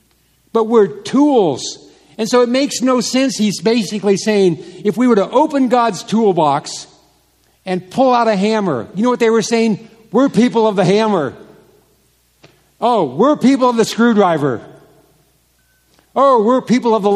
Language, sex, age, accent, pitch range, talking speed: English, male, 60-79, American, 165-225 Hz, 160 wpm